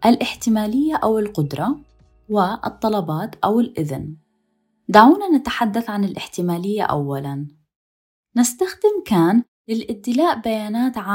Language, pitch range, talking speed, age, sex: Arabic, 160-235 Hz, 80 wpm, 20-39, female